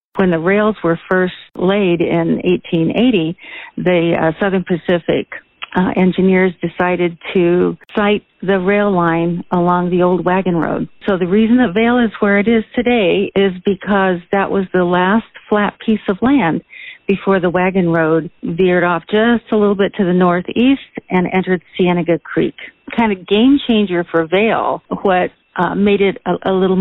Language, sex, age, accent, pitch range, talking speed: English, female, 50-69, American, 175-215 Hz, 170 wpm